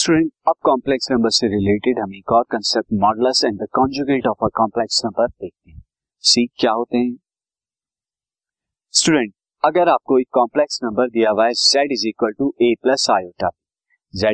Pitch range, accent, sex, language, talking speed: 115-145 Hz, native, male, Hindi, 90 wpm